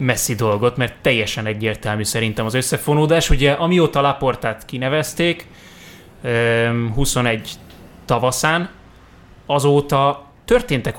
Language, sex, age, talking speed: Hungarian, male, 20-39, 85 wpm